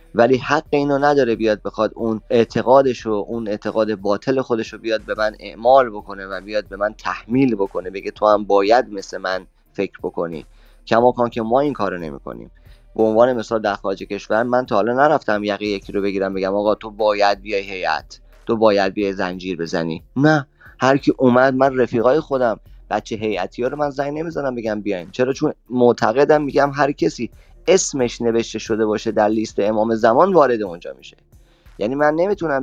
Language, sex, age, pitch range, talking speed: Persian, male, 30-49, 105-130 Hz, 180 wpm